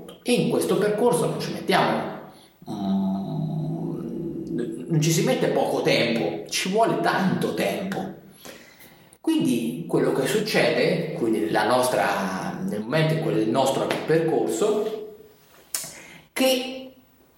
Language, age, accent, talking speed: Italian, 30-49, native, 95 wpm